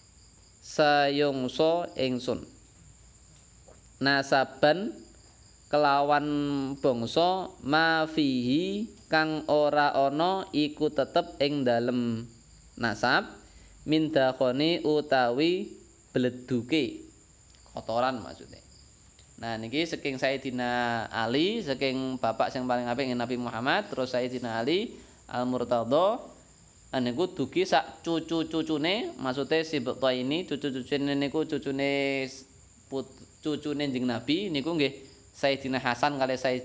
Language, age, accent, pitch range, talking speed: Indonesian, 20-39, native, 120-150 Hz, 105 wpm